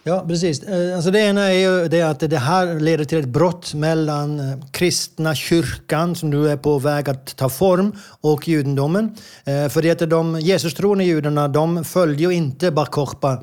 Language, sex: Swedish, male